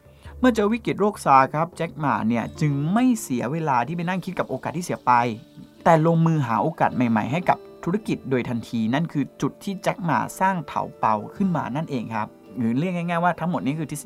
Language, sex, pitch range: Thai, male, 120-175 Hz